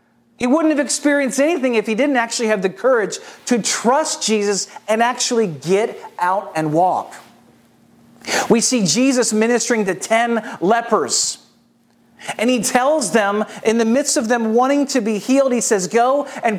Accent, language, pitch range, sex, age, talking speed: American, English, 200-255 Hz, male, 40-59, 165 wpm